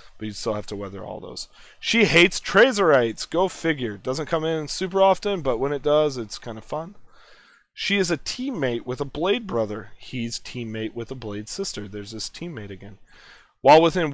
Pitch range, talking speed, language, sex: 110-145 Hz, 195 wpm, English, male